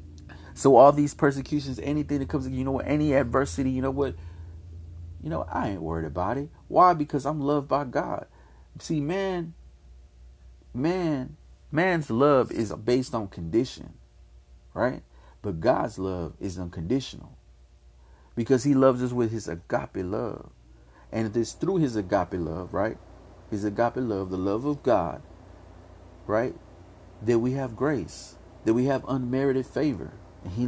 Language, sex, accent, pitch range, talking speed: English, male, American, 85-135 Hz, 150 wpm